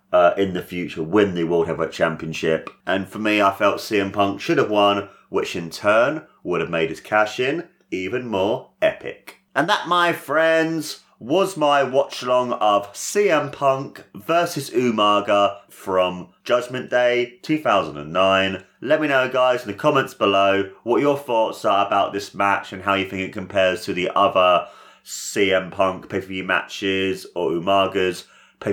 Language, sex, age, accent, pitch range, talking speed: English, male, 30-49, British, 95-135 Hz, 170 wpm